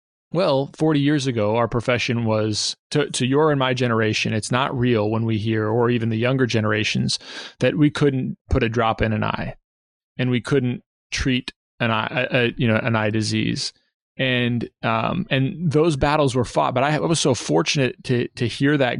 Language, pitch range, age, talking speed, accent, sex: English, 110-130 Hz, 20-39, 195 wpm, American, male